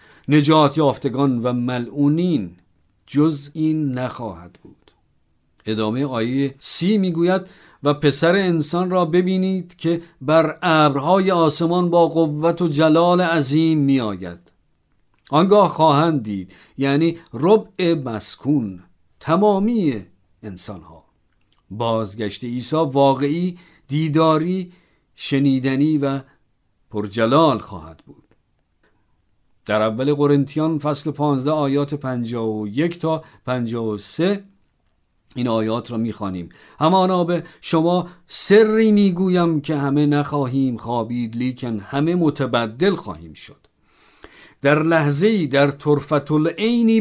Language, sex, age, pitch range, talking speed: Persian, male, 50-69, 115-165 Hz, 100 wpm